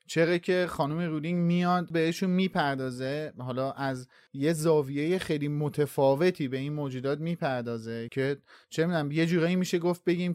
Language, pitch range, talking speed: Persian, 140-175 Hz, 145 wpm